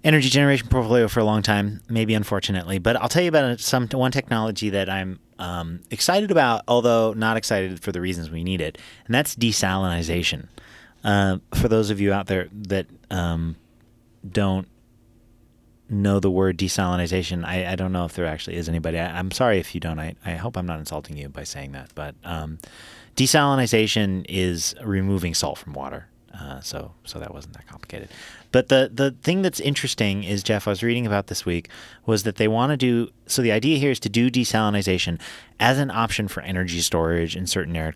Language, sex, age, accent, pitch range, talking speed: English, male, 30-49, American, 90-115 Hz, 200 wpm